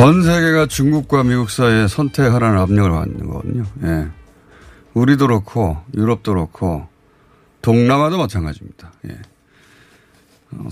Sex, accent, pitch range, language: male, native, 100-145 Hz, Korean